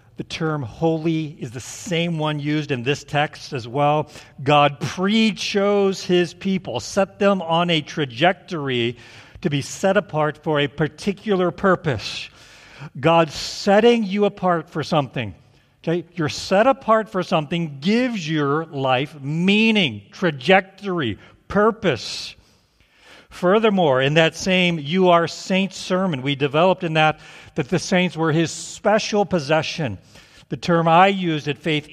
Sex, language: male, English